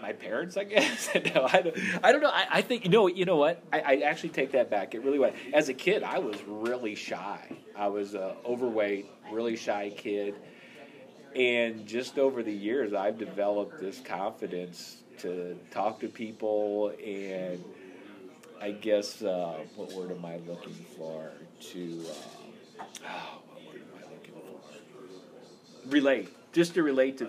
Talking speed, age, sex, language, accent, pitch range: 150 wpm, 40-59, male, English, American, 100-130 Hz